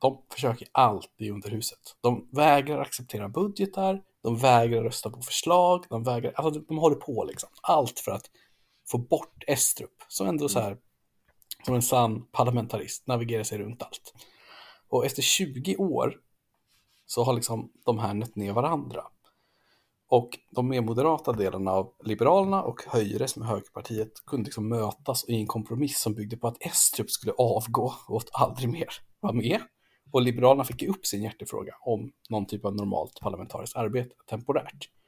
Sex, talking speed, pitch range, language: male, 165 wpm, 105-130 Hz, Swedish